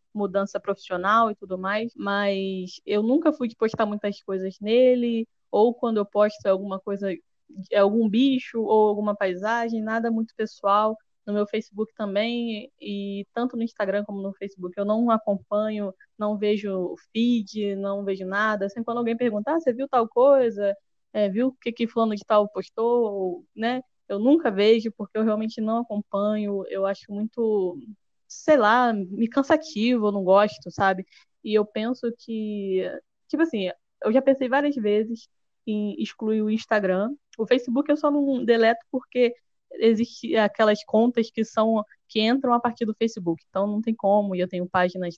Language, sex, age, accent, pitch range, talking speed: Portuguese, female, 10-29, Brazilian, 200-235 Hz, 170 wpm